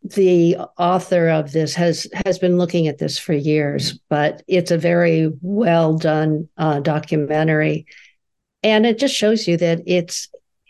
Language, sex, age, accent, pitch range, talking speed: English, female, 60-79, American, 165-205 Hz, 150 wpm